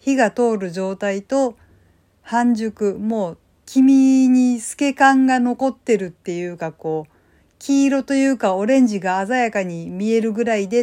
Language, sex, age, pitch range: Japanese, female, 50-69, 185-265 Hz